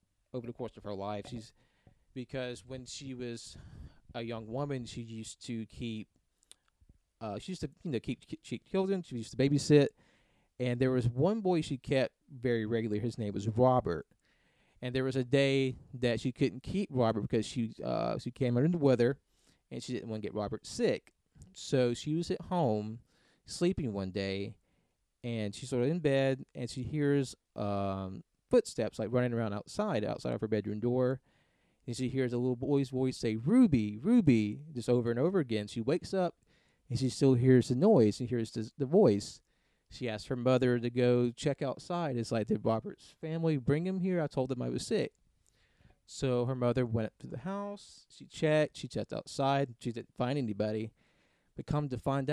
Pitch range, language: 110-140 Hz, English